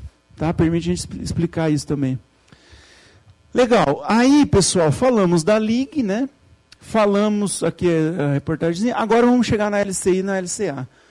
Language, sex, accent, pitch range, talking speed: Portuguese, male, Brazilian, 145-210 Hz, 135 wpm